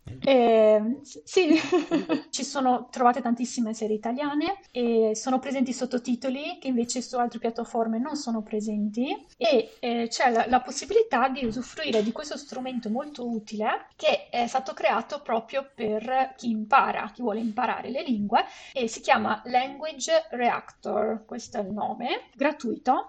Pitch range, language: 225-270 Hz, Italian